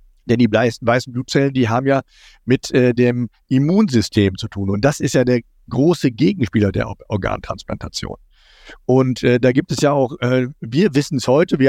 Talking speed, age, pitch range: 180 wpm, 50-69, 120-150 Hz